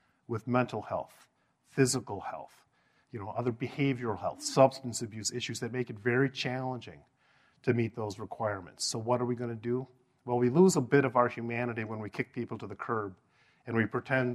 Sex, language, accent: male, English, American